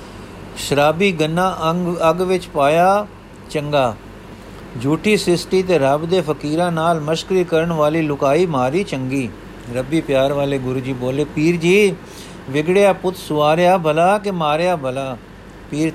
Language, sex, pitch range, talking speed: Punjabi, male, 140-180 Hz, 135 wpm